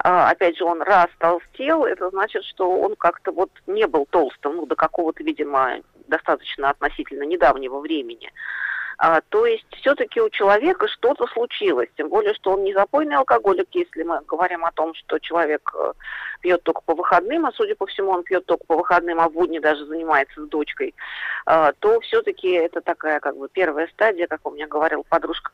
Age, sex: 40-59, female